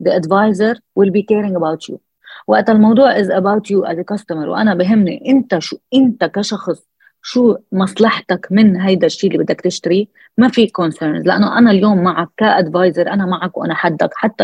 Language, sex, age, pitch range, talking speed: Arabic, female, 30-49, 175-220 Hz, 175 wpm